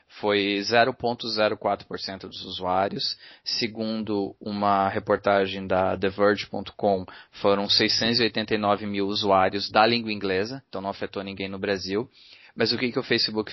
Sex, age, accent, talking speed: male, 20-39, Brazilian, 125 wpm